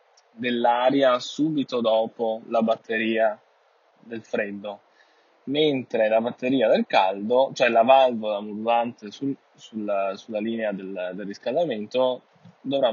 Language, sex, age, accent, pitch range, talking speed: Italian, male, 10-29, native, 110-125 Hz, 110 wpm